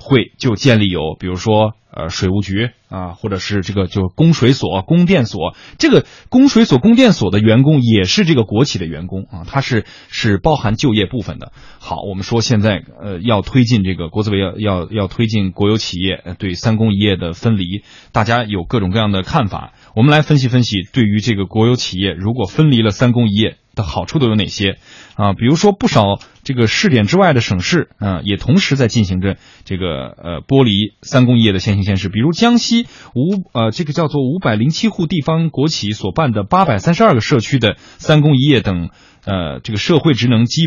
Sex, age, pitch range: male, 20-39, 100-140 Hz